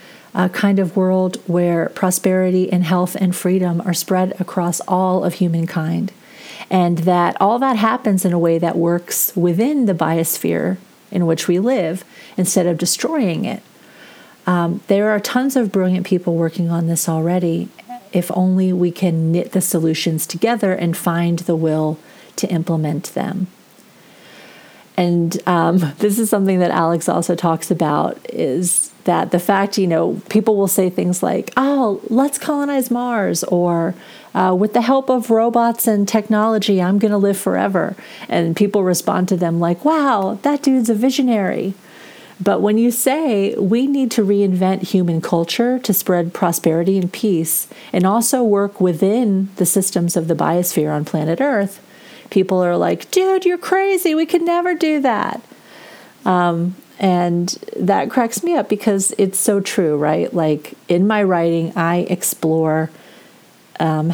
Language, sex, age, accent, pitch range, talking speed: English, female, 40-59, American, 175-220 Hz, 160 wpm